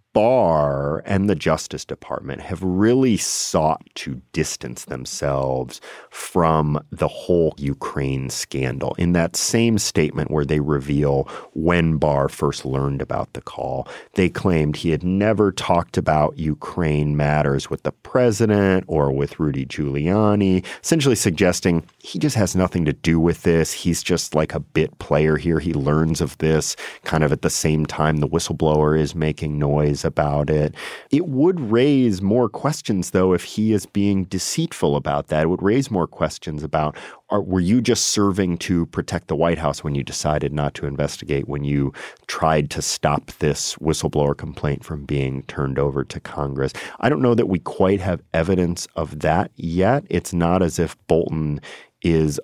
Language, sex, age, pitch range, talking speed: English, male, 40-59, 75-95 Hz, 165 wpm